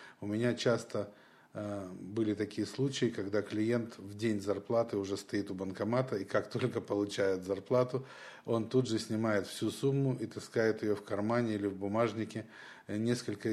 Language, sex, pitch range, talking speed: Russian, male, 100-120 Hz, 155 wpm